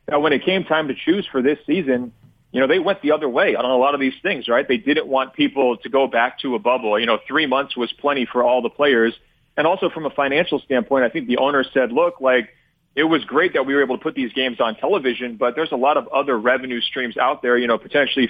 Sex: male